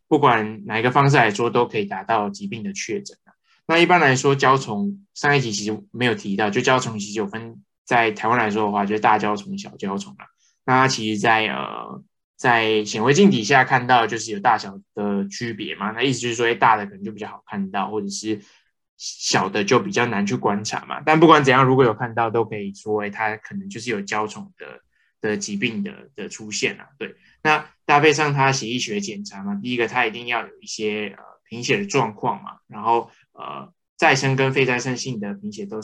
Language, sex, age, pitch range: Chinese, male, 20-39, 110-165 Hz